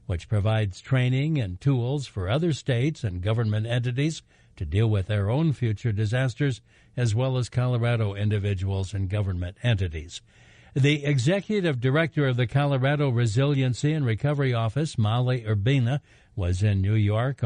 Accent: American